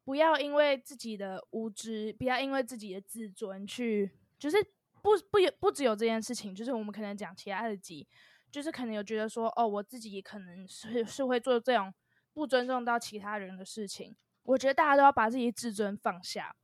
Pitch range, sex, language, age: 210-260 Hz, female, Chinese, 20-39